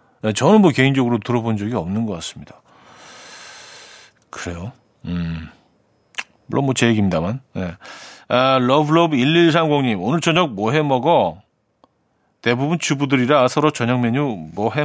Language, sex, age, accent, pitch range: Korean, male, 40-59, native, 115-150 Hz